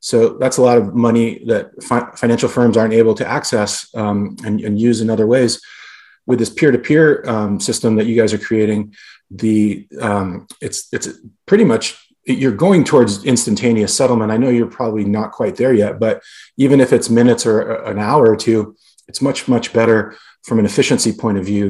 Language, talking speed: English, 195 wpm